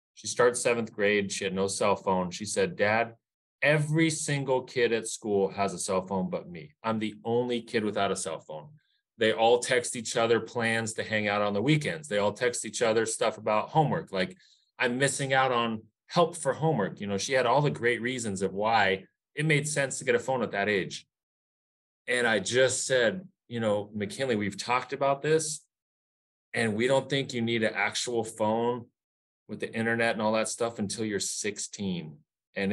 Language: English